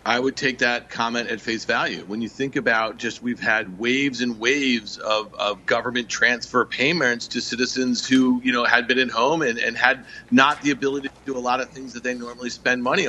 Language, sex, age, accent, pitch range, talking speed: English, male, 40-59, American, 125-180 Hz, 225 wpm